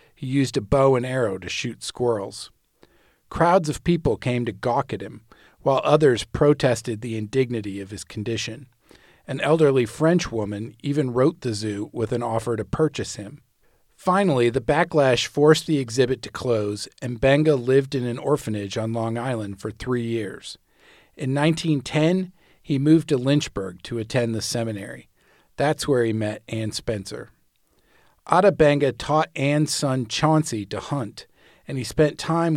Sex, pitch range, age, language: male, 110-145 Hz, 40-59, English